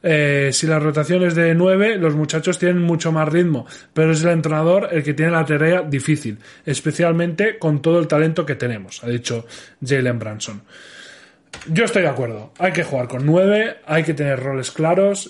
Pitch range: 135-170 Hz